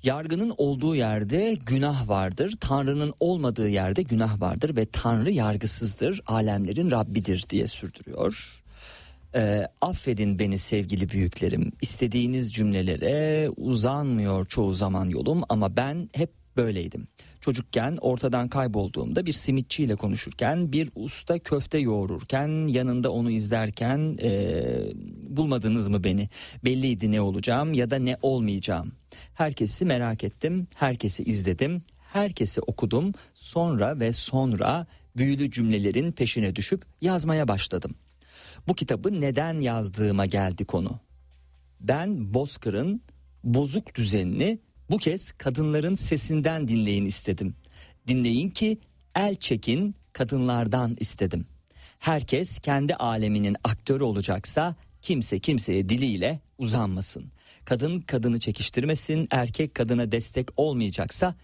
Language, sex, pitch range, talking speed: Turkish, male, 105-145 Hz, 105 wpm